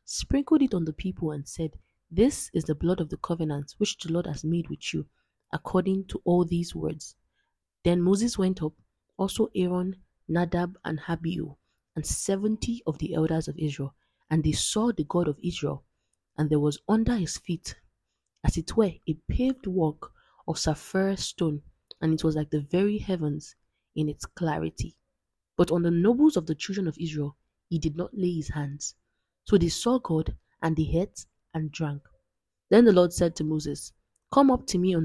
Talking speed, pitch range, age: 185 wpm, 150-185 Hz, 20-39